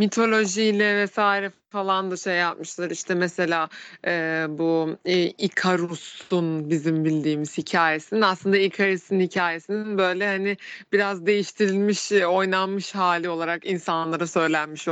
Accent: native